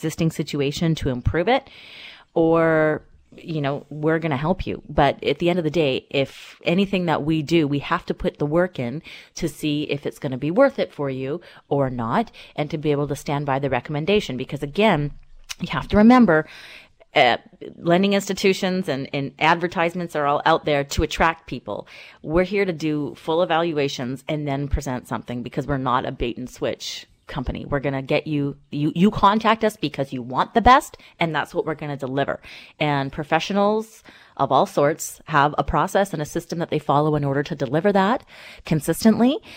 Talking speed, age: 200 wpm, 30-49